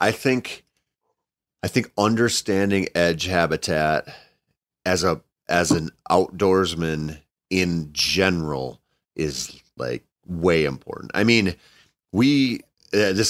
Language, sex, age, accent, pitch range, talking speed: English, male, 40-59, American, 85-110 Hz, 105 wpm